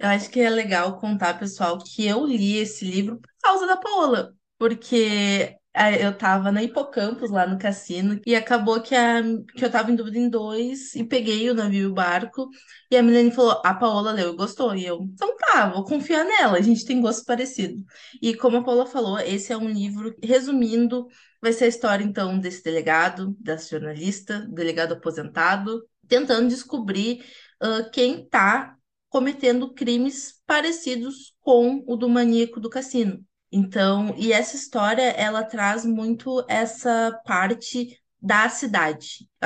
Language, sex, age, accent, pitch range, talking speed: Portuguese, female, 20-39, Brazilian, 195-245 Hz, 165 wpm